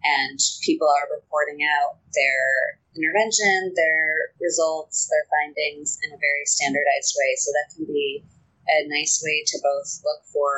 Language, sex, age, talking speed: English, female, 20-39, 155 wpm